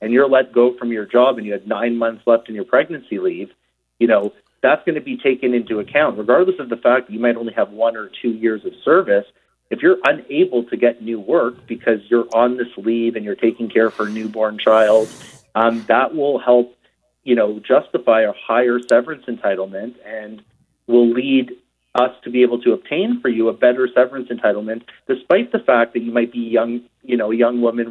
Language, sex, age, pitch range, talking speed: English, male, 40-59, 115-140 Hz, 215 wpm